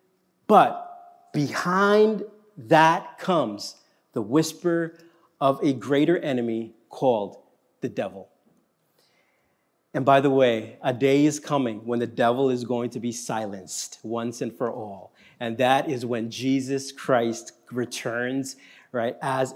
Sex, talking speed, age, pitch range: male, 130 wpm, 40-59, 135-190 Hz